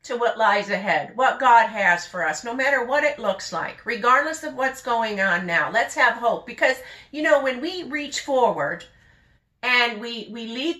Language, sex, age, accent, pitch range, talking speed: English, female, 50-69, American, 210-280 Hz, 195 wpm